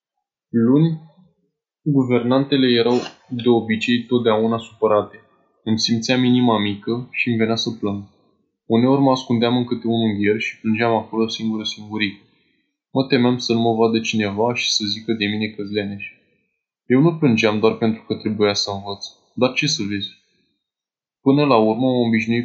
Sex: male